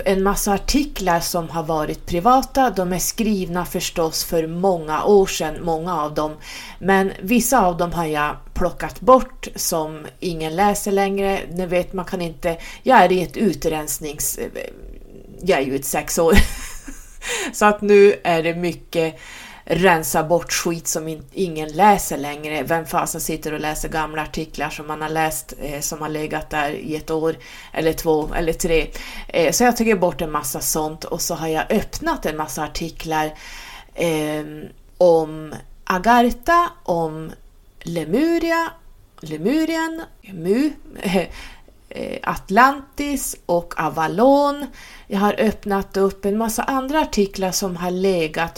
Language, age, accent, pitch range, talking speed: Swedish, 30-49, native, 160-205 Hz, 150 wpm